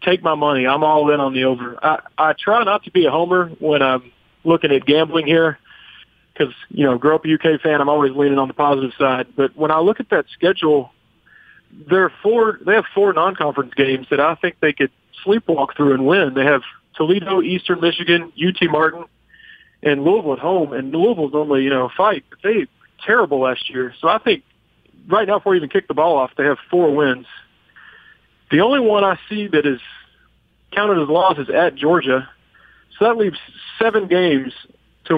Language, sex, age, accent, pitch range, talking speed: English, male, 40-59, American, 135-175 Hz, 200 wpm